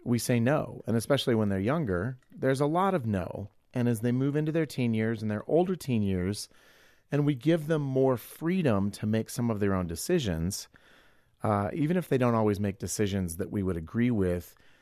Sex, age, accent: male, 40-59, American